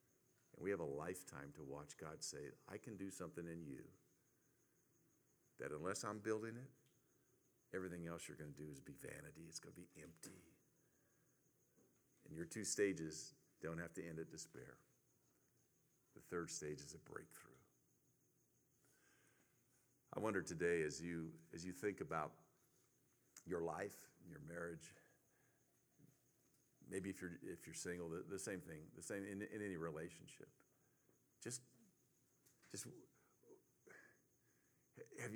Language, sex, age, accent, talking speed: English, male, 50-69, American, 135 wpm